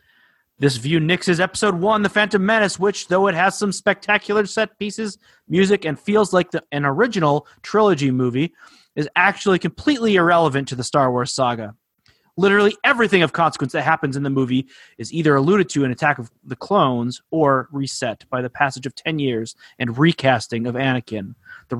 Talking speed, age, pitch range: 175 wpm, 30-49, 135-200 Hz